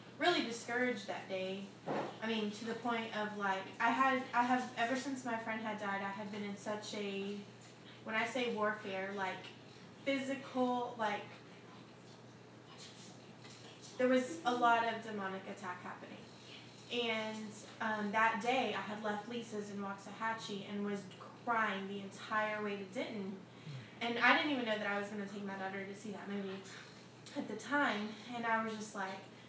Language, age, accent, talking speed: English, 20-39, American, 175 wpm